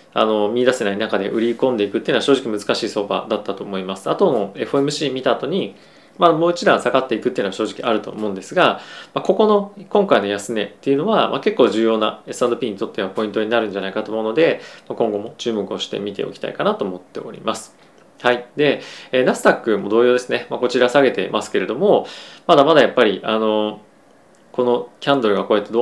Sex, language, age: male, Japanese, 20-39